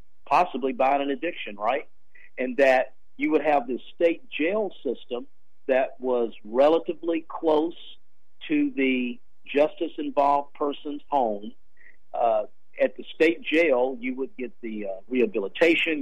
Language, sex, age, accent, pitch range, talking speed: English, male, 50-69, American, 115-150 Hz, 130 wpm